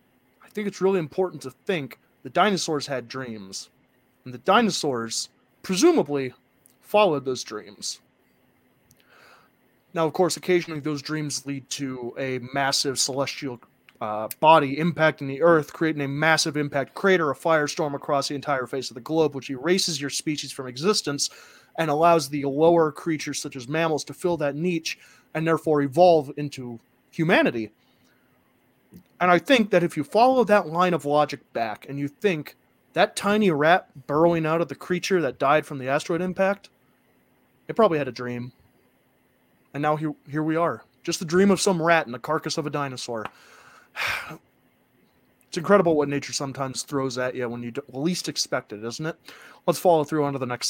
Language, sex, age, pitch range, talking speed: English, male, 30-49, 135-170 Hz, 170 wpm